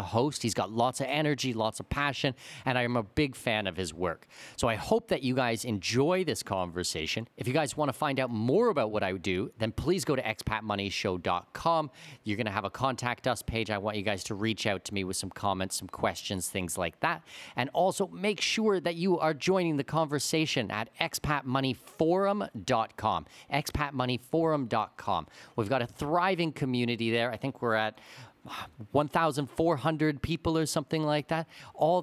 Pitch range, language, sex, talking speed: 110-150 Hz, English, male, 185 wpm